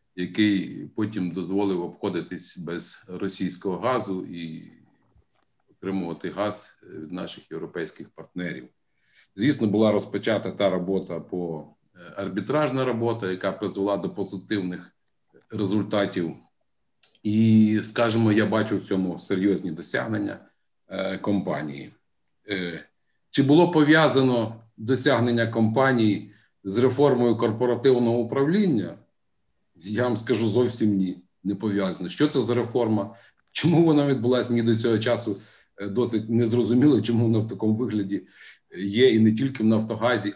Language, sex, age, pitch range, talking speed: Ukrainian, male, 50-69, 100-125 Hz, 115 wpm